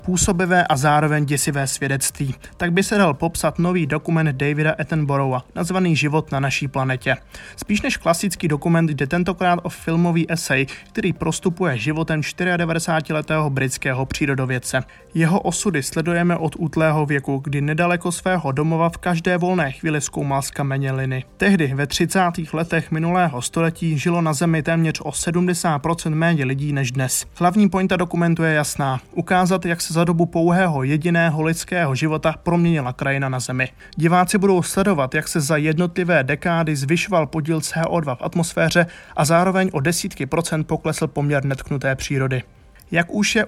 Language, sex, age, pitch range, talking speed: Czech, male, 20-39, 145-175 Hz, 150 wpm